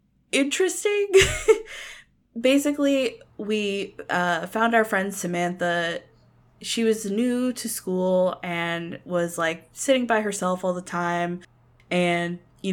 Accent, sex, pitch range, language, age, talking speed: American, female, 175-210 Hz, English, 20-39, 115 wpm